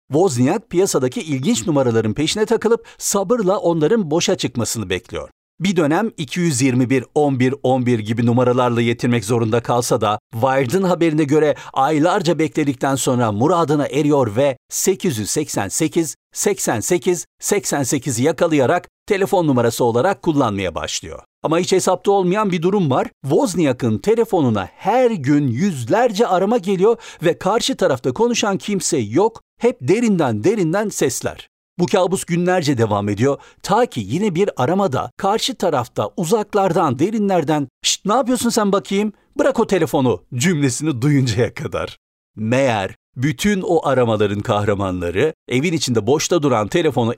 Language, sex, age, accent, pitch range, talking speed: Turkish, male, 60-79, native, 125-190 Hz, 125 wpm